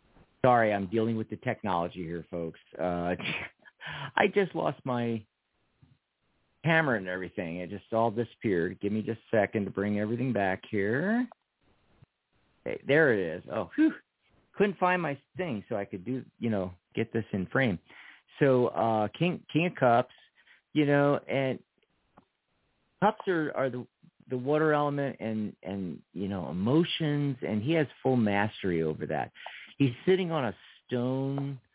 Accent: American